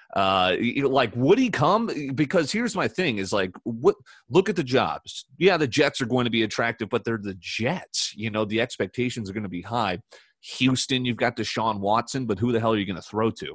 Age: 30-49